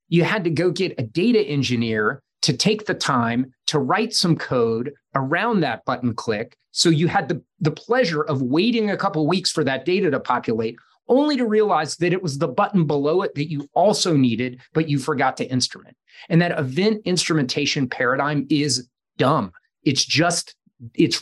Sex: male